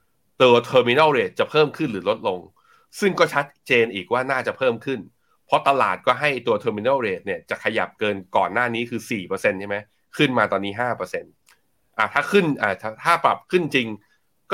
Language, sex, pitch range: Thai, male, 110-140 Hz